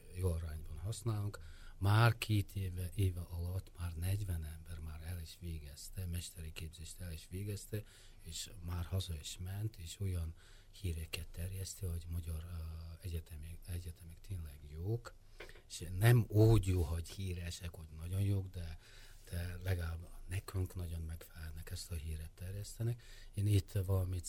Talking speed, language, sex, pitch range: 140 wpm, Hungarian, male, 85-100 Hz